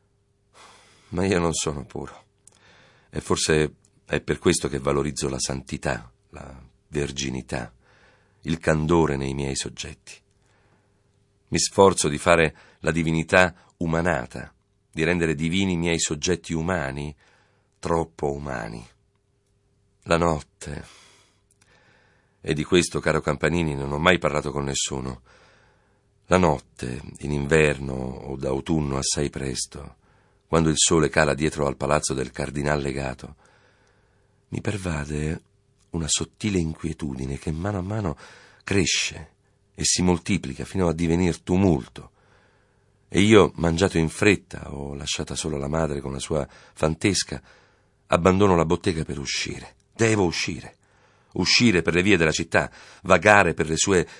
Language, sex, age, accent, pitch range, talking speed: Italian, male, 50-69, native, 75-100 Hz, 130 wpm